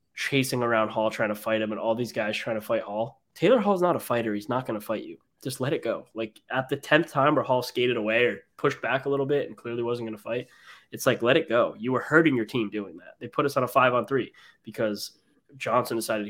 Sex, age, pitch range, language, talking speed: male, 10-29, 110-135 Hz, English, 265 wpm